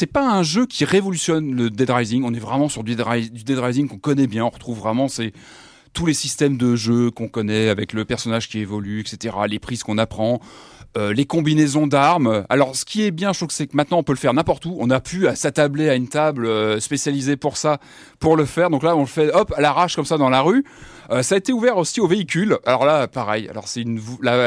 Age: 30-49